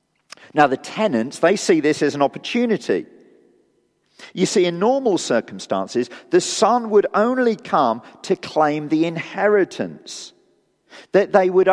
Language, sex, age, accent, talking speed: English, male, 50-69, British, 135 wpm